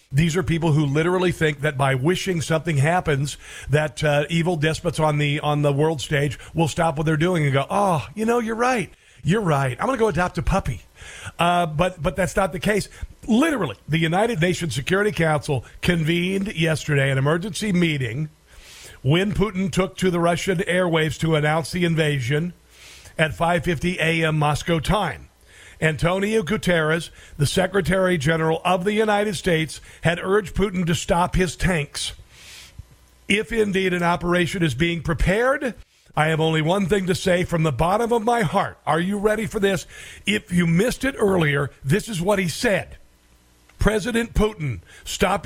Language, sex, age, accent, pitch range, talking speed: English, male, 50-69, American, 155-190 Hz, 170 wpm